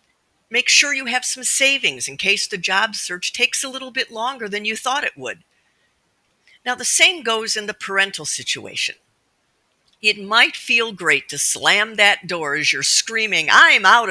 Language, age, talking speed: English, 50-69, 180 wpm